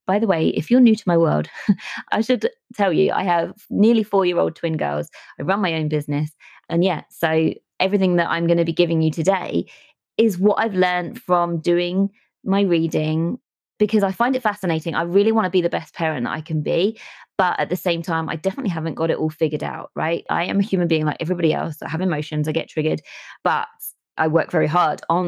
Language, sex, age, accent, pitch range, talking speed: English, female, 20-39, British, 160-190 Hz, 225 wpm